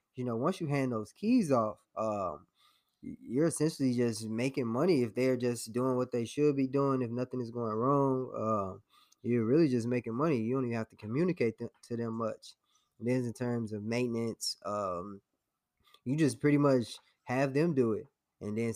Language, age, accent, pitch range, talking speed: English, 20-39, American, 115-135 Hz, 190 wpm